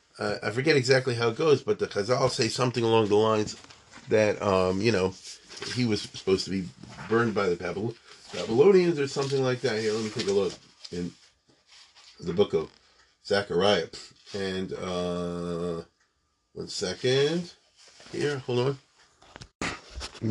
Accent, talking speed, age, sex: American, 150 wpm, 40-59, male